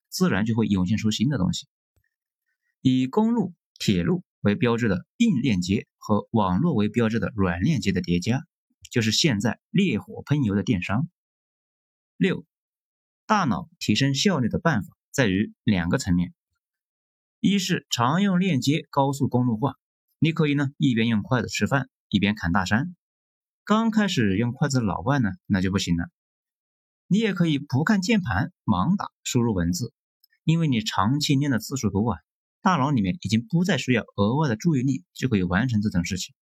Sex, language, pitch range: male, Chinese, 105-170 Hz